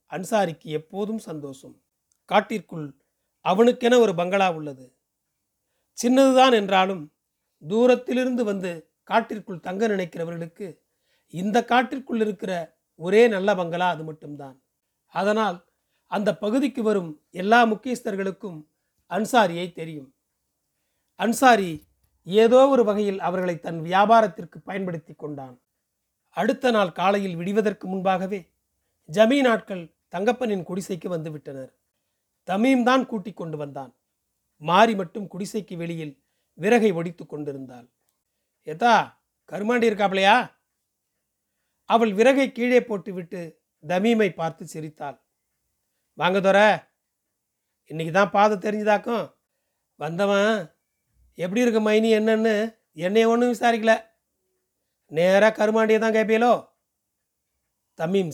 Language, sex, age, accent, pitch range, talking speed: Tamil, male, 40-59, native, 165-225 Hz, 90 wpm